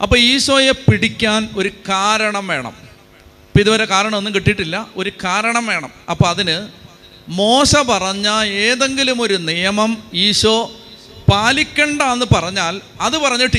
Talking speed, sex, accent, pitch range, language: 120 wpm, male, native, 175-220 Hz, Malayalam